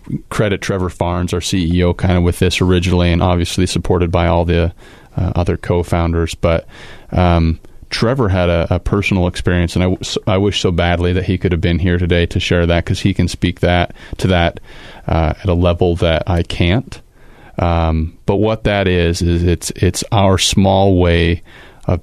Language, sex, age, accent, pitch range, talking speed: English, male, 30-49, American, 85-95 Hz, 190 wpm